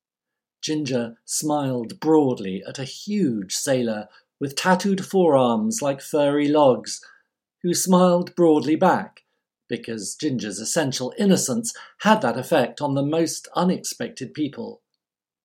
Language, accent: English, British